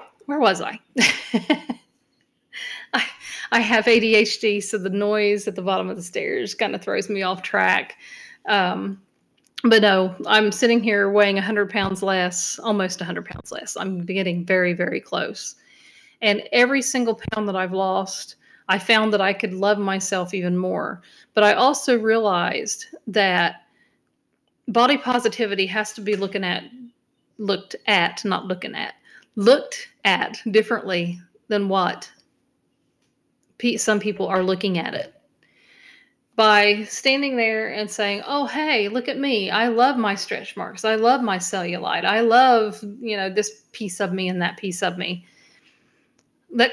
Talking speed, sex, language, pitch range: 155 wpm, female, English, 195-245 Hz